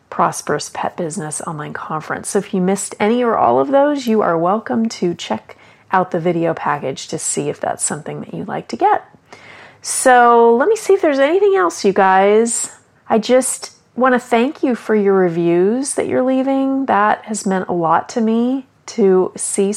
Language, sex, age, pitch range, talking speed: English, female, 30-49, 185-245 Hz, 195 wpm